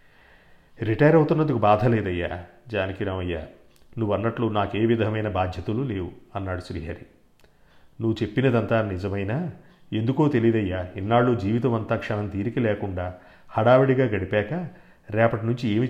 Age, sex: 40-59, male